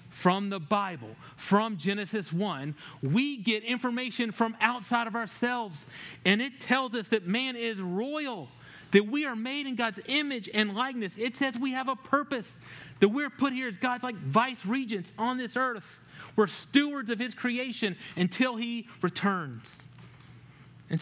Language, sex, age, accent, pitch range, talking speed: English, male, 30-49, American, 150-235 Hz, 165 wpm